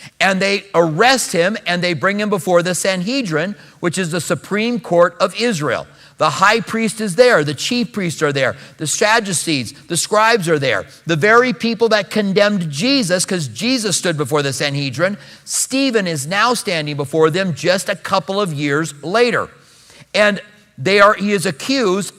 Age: 50-69